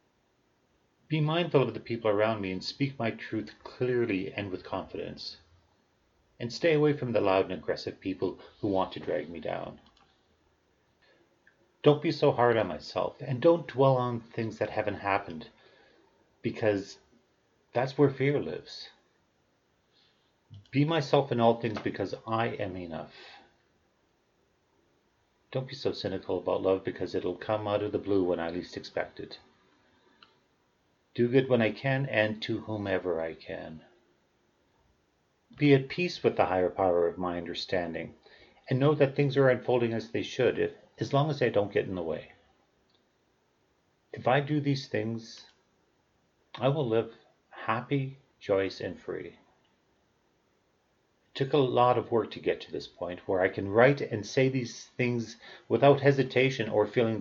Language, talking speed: English, 155 wpm